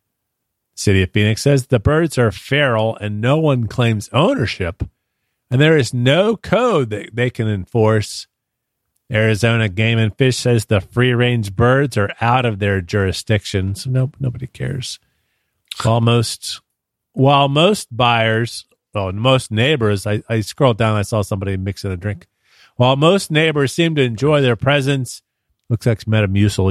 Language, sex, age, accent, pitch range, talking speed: English, male, 40-59, American, 105-135 Hz, 155 wpm